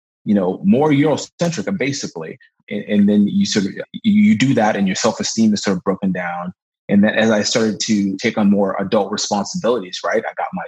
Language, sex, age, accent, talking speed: English, male, 30-49, American, 200 wpm